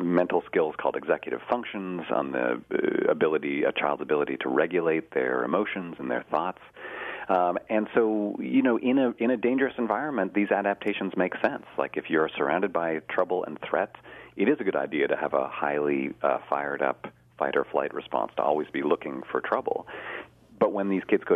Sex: male